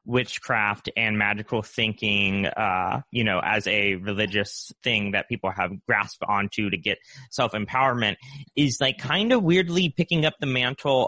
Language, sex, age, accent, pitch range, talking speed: English, male, 30-49, American, 100-125 Hz, 150 wpm